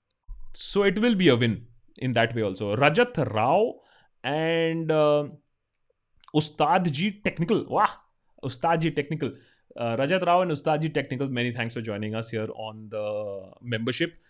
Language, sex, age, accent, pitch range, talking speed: Hindi, male, 30-49, native, 125-190 Hz, 150 wpm